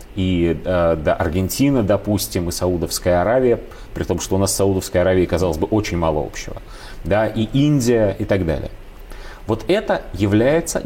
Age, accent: 30-49, native